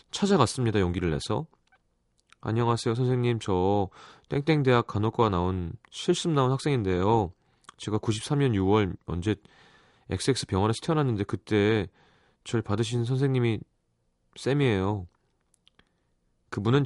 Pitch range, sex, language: 90-130 Hz, male, Korean